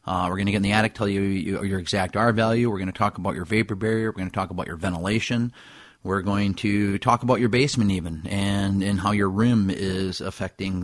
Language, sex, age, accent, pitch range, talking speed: English, male, 30-49, American, 95-120 Hz, 250 wpm